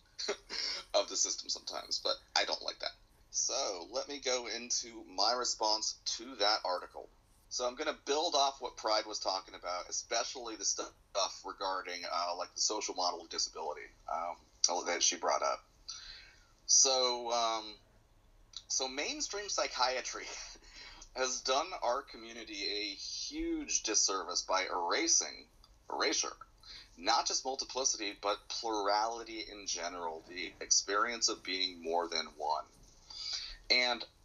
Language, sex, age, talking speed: English, male, 30-49, 135 wpm